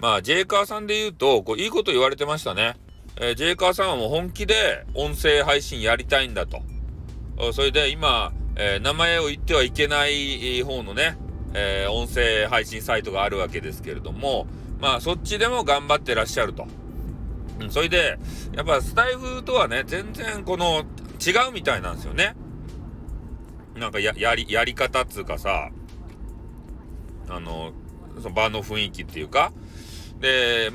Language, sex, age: Japanese, male, 40-59